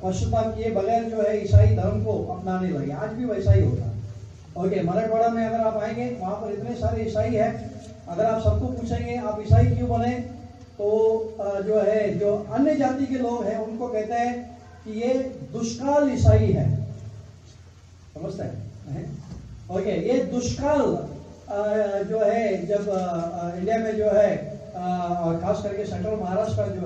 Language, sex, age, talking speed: Urdu, male, 30-49, 130 wpm